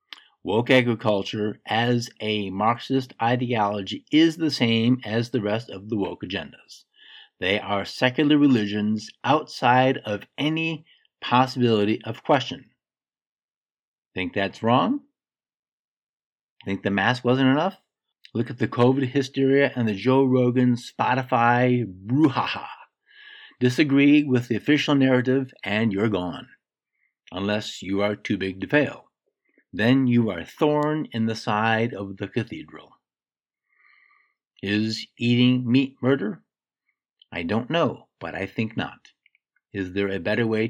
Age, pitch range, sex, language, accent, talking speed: 50-69, 110-140 Hz, male, English, American, 130 wpm